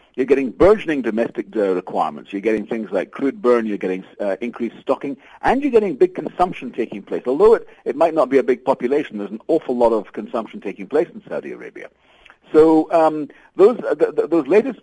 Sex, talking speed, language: male, 205 wpm, English